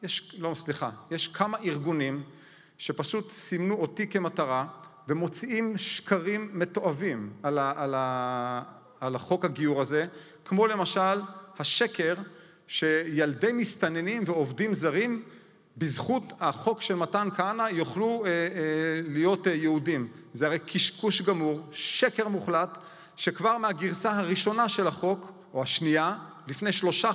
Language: Hebrew